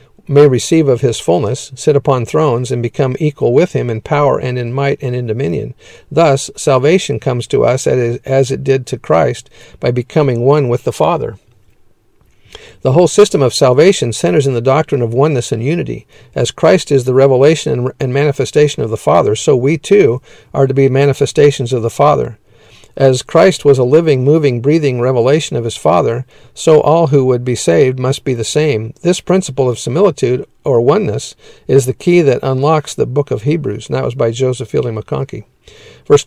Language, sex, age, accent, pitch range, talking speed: English, male, 50-69, American, 125-150 Hz, 190 wpm